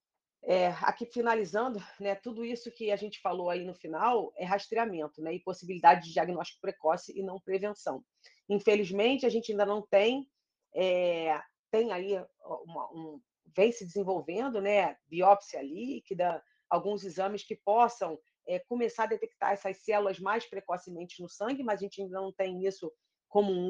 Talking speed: 160 wpm